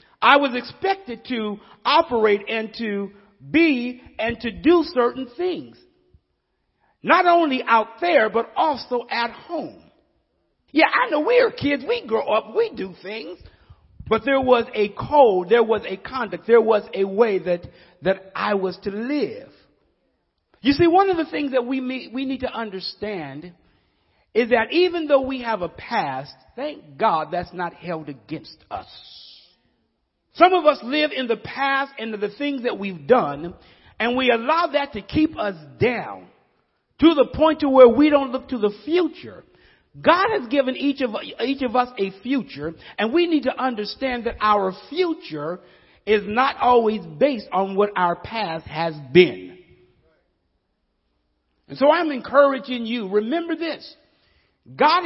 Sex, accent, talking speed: male, American, 160 wpm